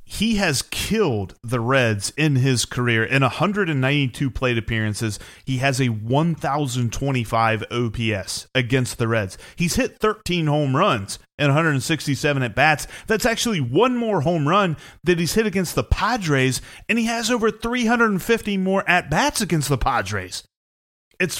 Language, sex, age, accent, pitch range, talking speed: English, male, 30-49, American, 115-155 Hz, 145 wpm